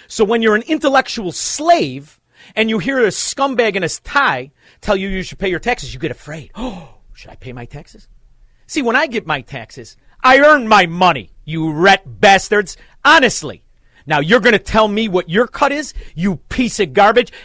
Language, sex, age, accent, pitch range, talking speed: English, male, 40-59, American, 155-235 Hz, 200 wpm